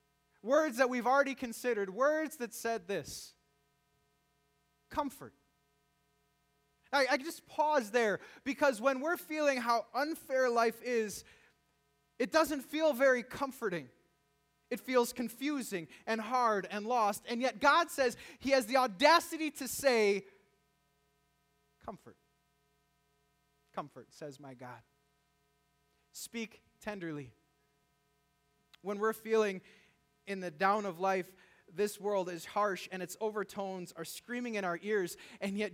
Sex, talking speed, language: male, 125 wpm, English